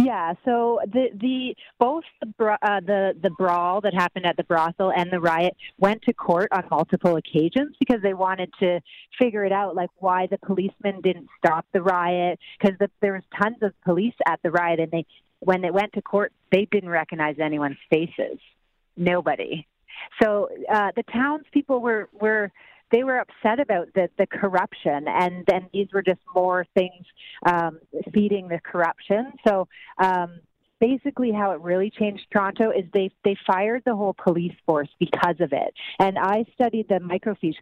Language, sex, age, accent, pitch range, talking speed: English, female, 30-49, American, 175-215 Hz, 175 wpm